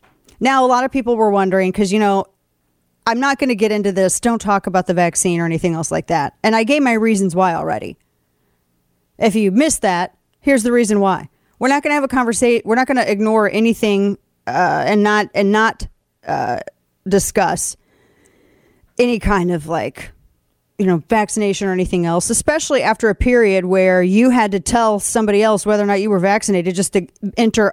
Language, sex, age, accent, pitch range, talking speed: English, female, 30-49, American, 190-240 Hz, 200 wpm